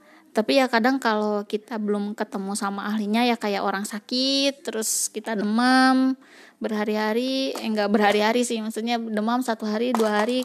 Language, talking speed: Indonesian, 155 wpm